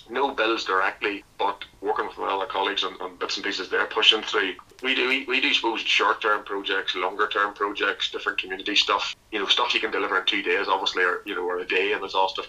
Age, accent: 30-49, Irish